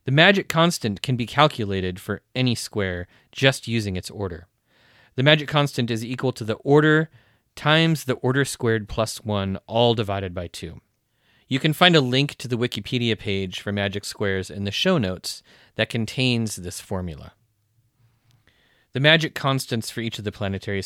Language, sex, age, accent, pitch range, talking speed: English, male, 30-49, American, 100-125 Hz, 170 wpm